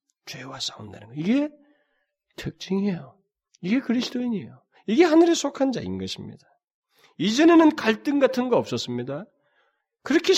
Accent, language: native, Korean